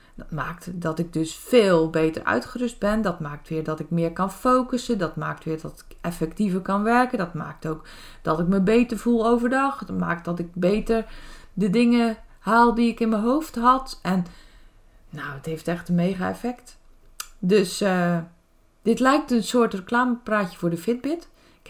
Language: Dutch